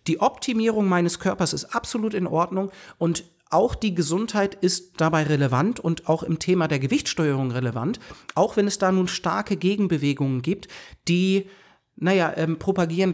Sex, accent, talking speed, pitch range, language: male, German, 155 wpm, 155-200 Hz, German